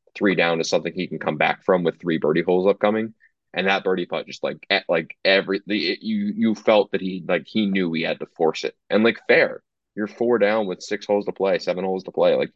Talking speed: 245 wpm